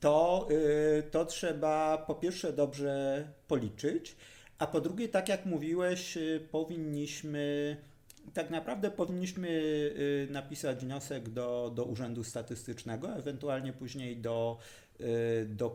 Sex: male